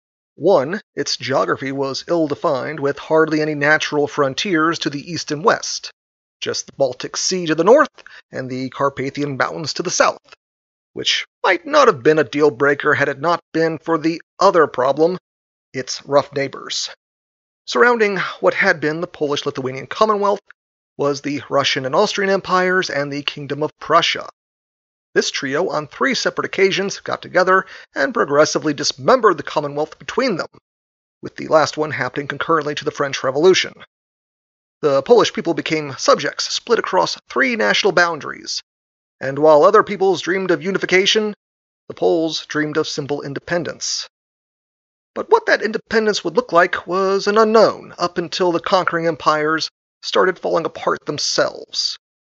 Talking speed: 150 wpm